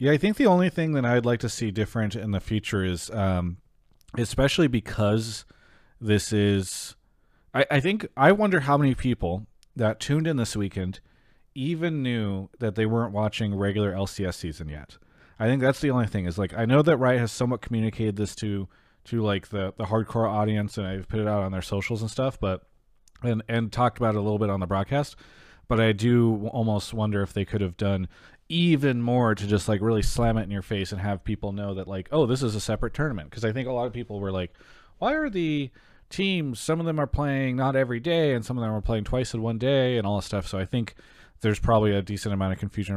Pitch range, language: 100-125 Hz, English